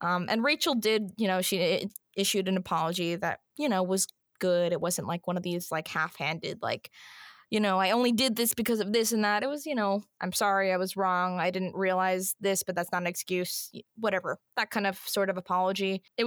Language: English